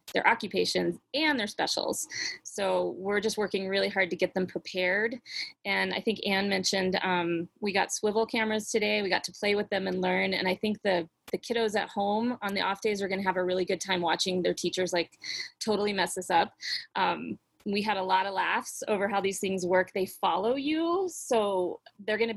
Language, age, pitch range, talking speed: English, 20-39, 185-225 Hz, 215 wpm